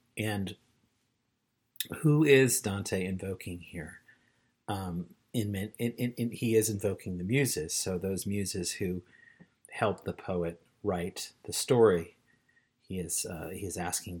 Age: 40-59